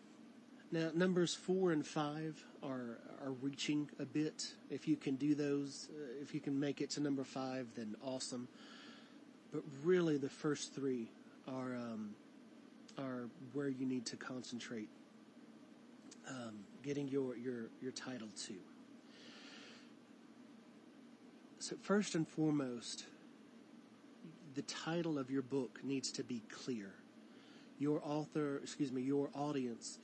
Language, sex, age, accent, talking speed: English, male, 30-49, American, 130 wpm